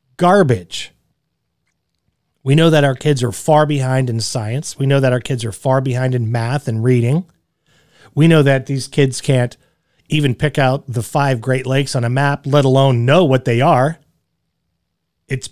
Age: 40-59